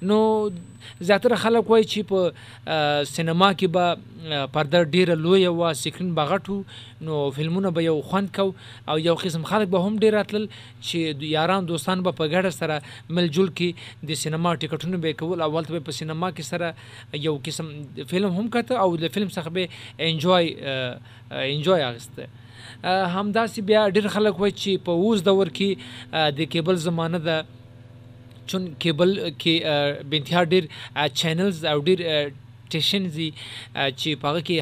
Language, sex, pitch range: Urdu, male, 140-185 Hz